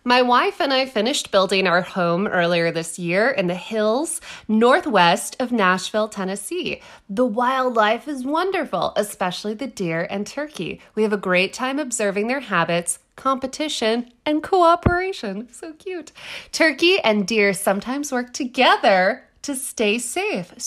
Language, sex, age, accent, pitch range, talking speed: English, female, 20-39, American, 210-295 Hz, 140 wpm